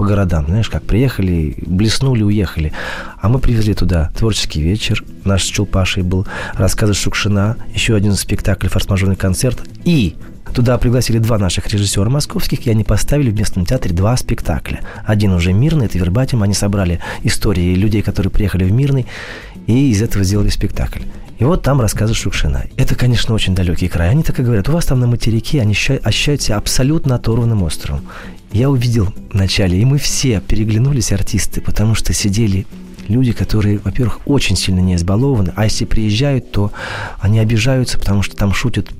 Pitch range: 95-125 Hz